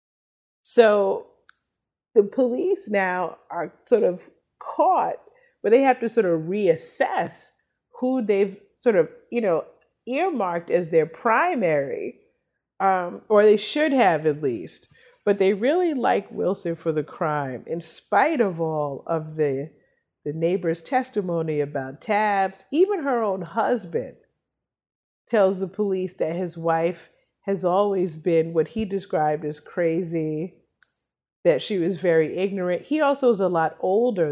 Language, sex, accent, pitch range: English, female, American, 170-235 Hz